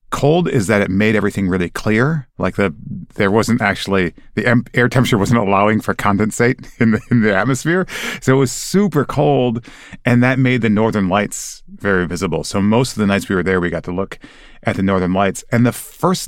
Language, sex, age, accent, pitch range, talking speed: English, male, 30-49, American, 95-120 Hz, 205 wpm